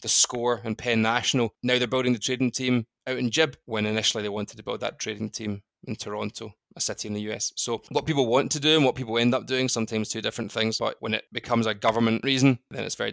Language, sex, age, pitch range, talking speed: English, male, 20-39, 110-125 Hz, 255 wpm